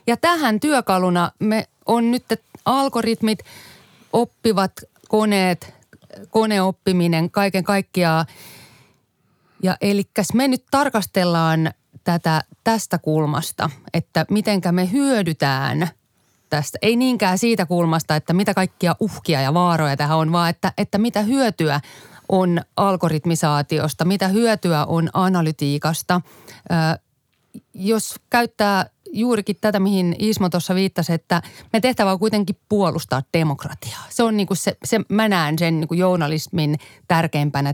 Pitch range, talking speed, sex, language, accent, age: 160-215 Hz, 120 wpm, female, Finnish, native, 30-49